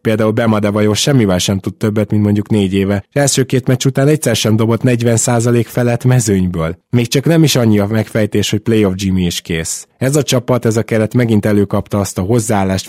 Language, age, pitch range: Hungarian, 20-39, 100-120 Hz